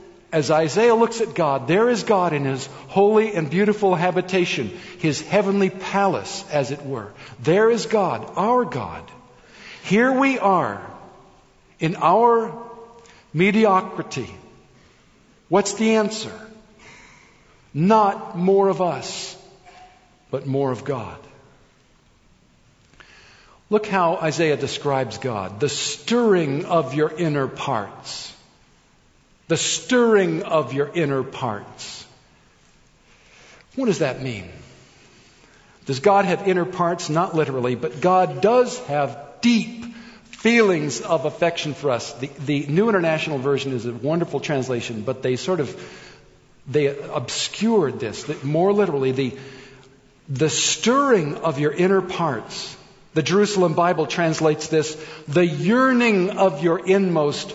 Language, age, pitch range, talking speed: English, 50-69, 145-200 Hz, 120 wpm